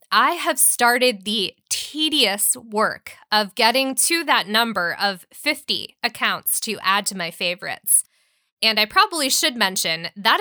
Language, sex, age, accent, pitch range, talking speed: English, female, 20-39, American, 200-260 Hz, 145 wpm